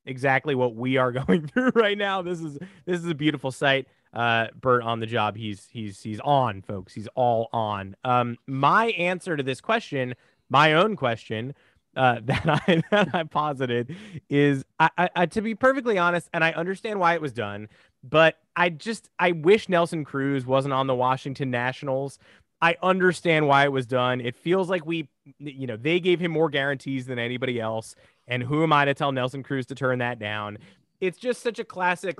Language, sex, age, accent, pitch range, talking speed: English, male, 30-49, American, 130-170 Hz, 200 wpm